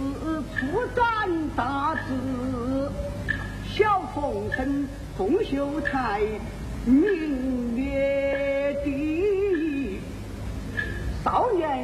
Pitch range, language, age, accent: 260-375 Hz, Chinese, 40-59, native